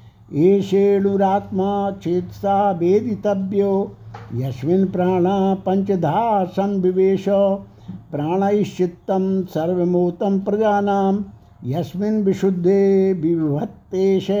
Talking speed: 45 wpm